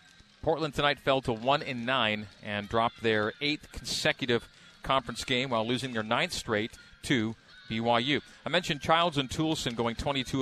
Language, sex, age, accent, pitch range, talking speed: English, male, 40-59, American, 120-145 Hz, 155 wpm